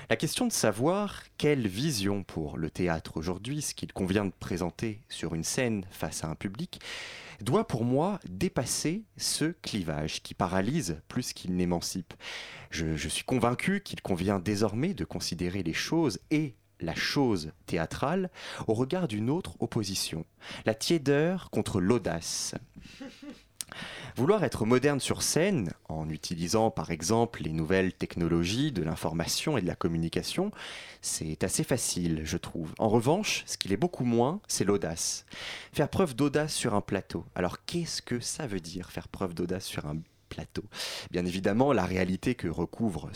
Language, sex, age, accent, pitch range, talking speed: French, male, 30-49, French, 90-140 Hz, 155 wpm